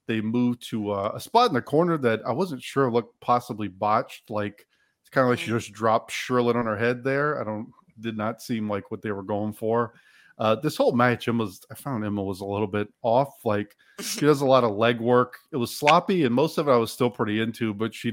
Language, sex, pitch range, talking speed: English, male, 105-120 Hz, 250 wpm